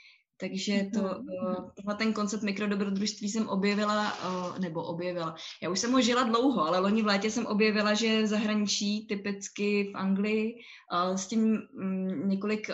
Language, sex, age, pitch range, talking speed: Czech, female, 20-39, 195-230 Hz, 140 wpm